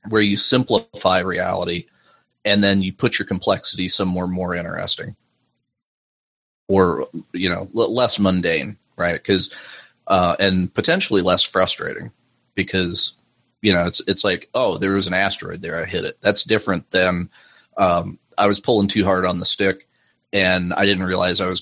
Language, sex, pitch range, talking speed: English, male, 90-100 Hz, 165 wpm